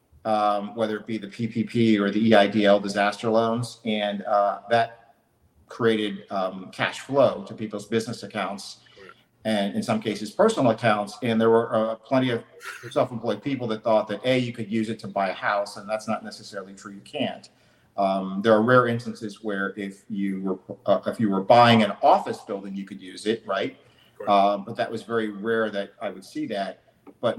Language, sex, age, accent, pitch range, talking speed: English, male, 50-69, American, 100-115 Hz, 195 wpm